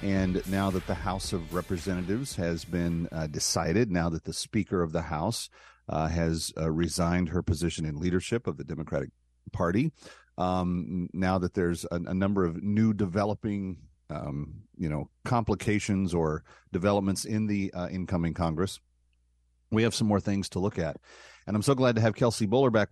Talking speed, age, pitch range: 180 wpm, 40-59, 85-105 Hz